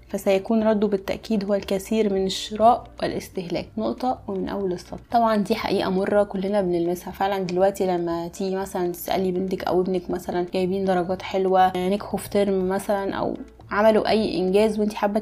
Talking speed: 160 wpm